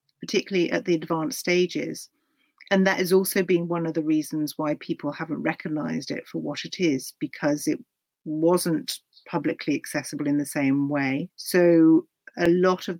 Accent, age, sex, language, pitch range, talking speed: British, 40-59, female, English, 150-200 Hz, 165 wpm